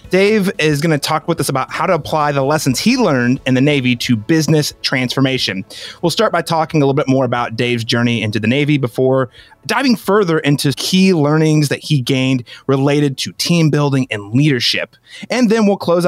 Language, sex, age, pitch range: English, male, 30-49, 125-175 Hz